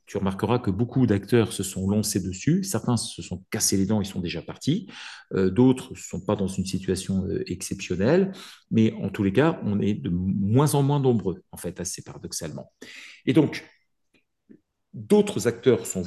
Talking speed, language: 185 wpm, French